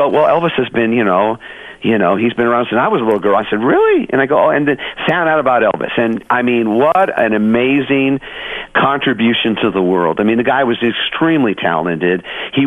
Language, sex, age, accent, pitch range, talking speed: English, male, 50-69, American, 105-130 Hz, 225 wpm